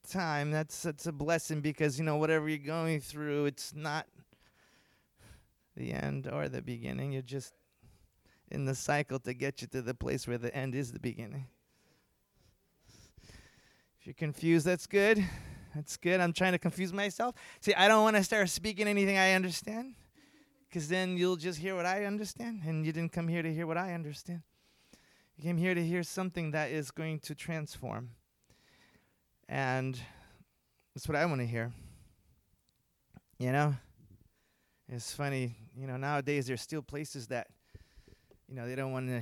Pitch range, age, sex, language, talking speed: 130-190 Hz, 20-39, male, English, 170 wpm